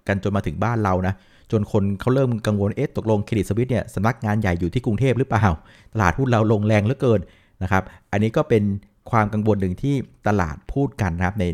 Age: 60-79